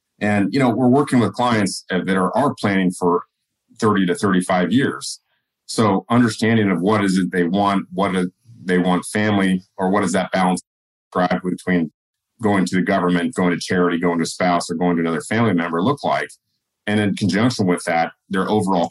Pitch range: 85-100 Hz